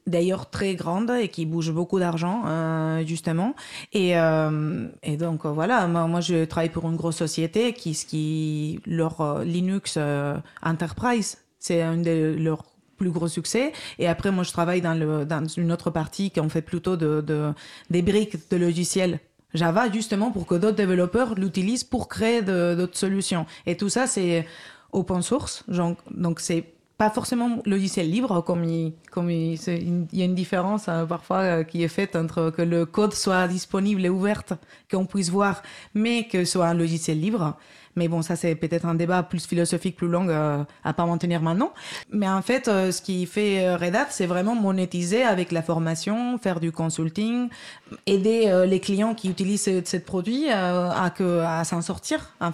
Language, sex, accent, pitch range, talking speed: French, female, French, 165-195 Hz, 190 wpm